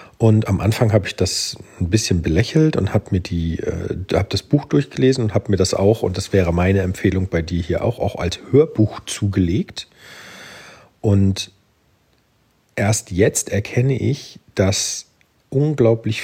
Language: German